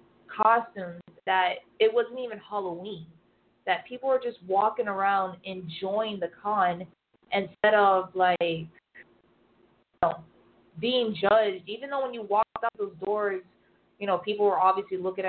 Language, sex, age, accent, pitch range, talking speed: English, female, 20-39, American, 185-250 Hz, 140 wpm